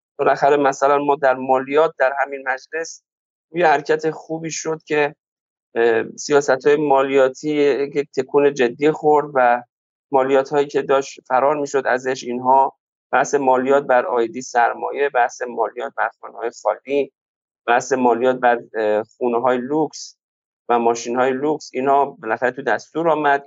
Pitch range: 130-155 Hz